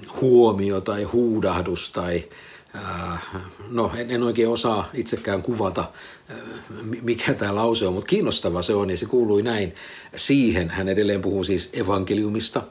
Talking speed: 130 wpm